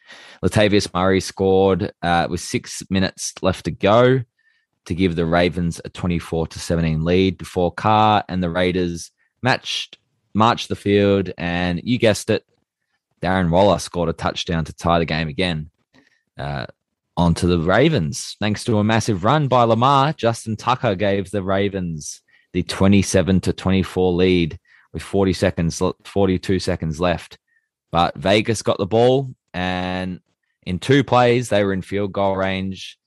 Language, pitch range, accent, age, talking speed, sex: English, 85-105 Hz, Australian, 20-39, 155 wpm, male